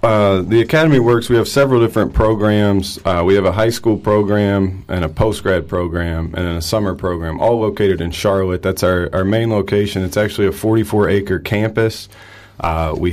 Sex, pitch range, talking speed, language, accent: male, 90-105 Hz, 185 wpm, English, American